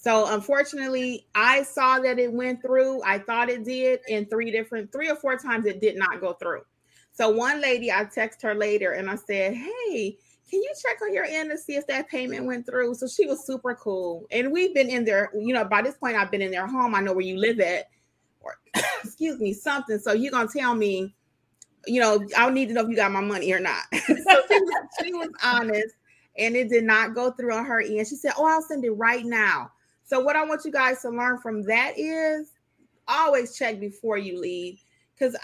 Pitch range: 210-265 Hz